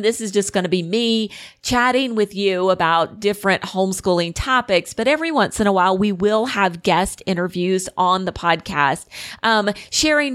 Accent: American